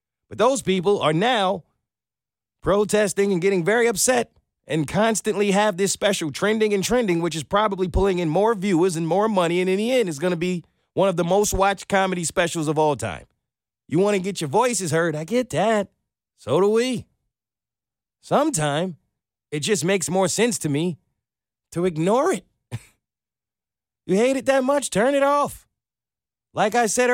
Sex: male